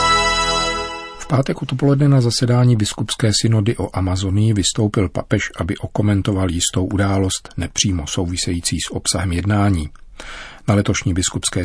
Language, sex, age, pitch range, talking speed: Czech, male, 40-59, 90-105 Hz, 115 wpm